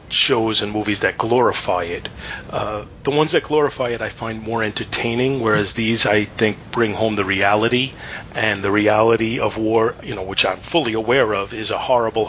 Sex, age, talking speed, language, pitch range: male, 30-49, 190 wpm, English, 110-125 Hz